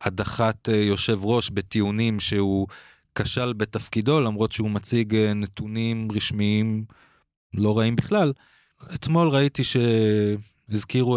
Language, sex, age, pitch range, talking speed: Hebrew, male, 30-49, 100-120 Hz, 95 wpm